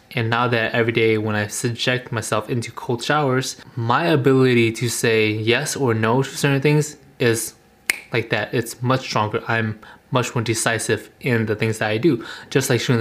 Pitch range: 115-135 Hz